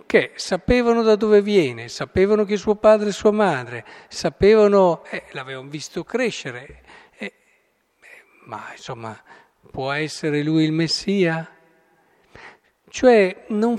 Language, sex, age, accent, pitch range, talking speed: Italian, male, 50-69, native, 145-200 Hz, 120 wpm